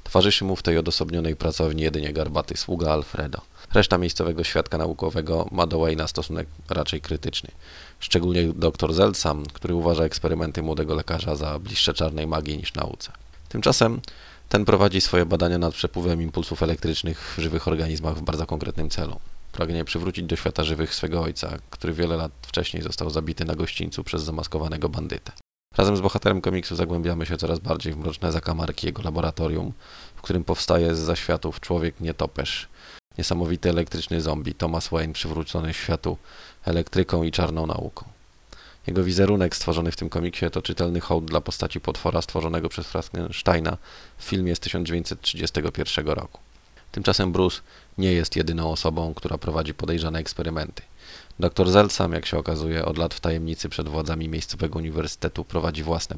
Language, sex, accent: Polish, male, native